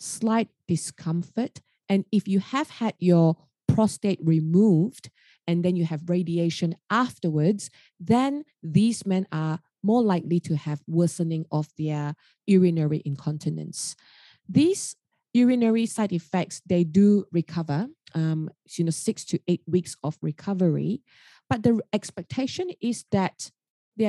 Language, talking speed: English, 125 wpm